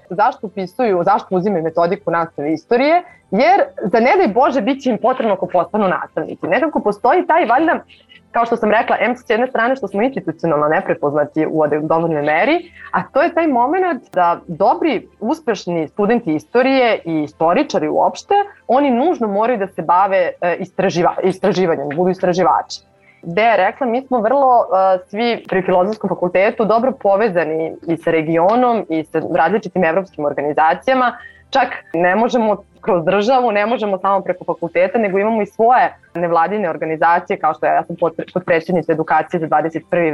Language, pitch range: English, 170-235 Hz